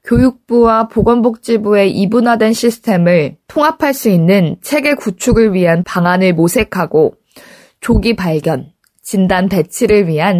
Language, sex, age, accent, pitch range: Korean, female, 20-39, native, 175-235 Hz